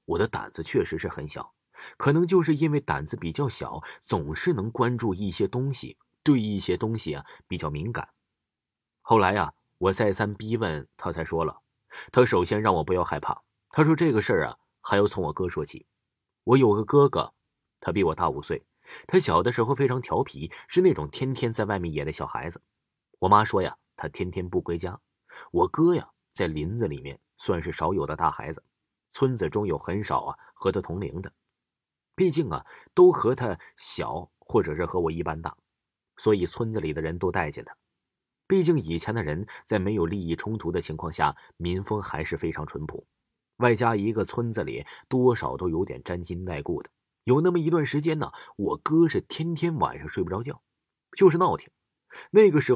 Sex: male